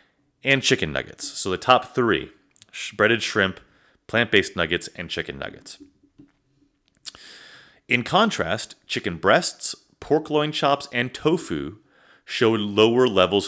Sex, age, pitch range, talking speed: male, 30-49, 90-130 Hz, 115 wpm